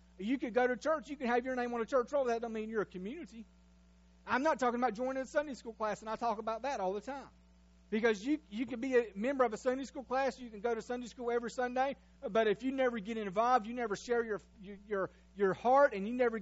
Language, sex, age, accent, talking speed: English, male, 30-49, American, 265 wpm